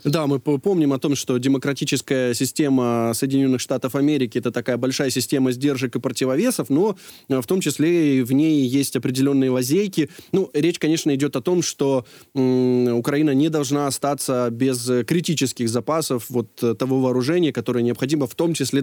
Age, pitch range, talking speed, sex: 20-39, 130-160 Hz, 160 wpm, male